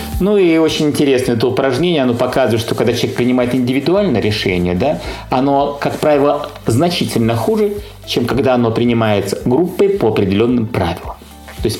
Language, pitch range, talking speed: Russian, 110-185 Hz, 155 wpm